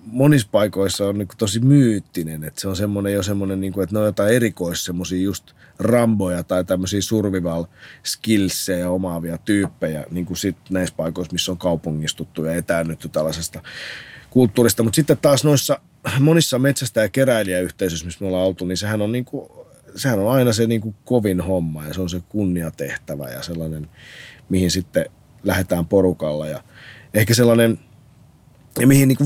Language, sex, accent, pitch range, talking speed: Finnish, male, native, 90-115 Hz, 160 wpm